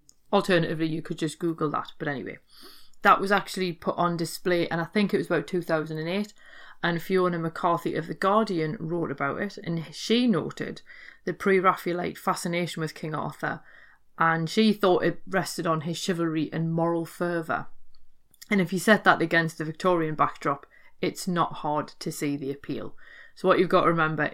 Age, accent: 30-49, British